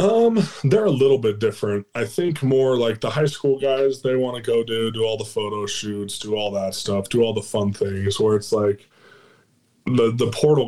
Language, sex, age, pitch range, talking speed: English, male, 20-39, 100-115 Hz, 220 wpm